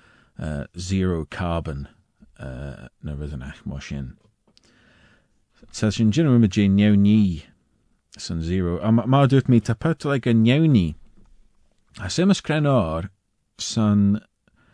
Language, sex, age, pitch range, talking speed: English, male, 40-59, 80-115 Hz, 145 wpm